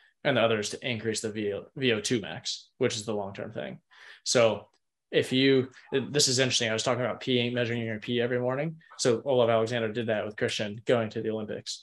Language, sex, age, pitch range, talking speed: English, male, 20-39, 110-130 Hz, 220 wpm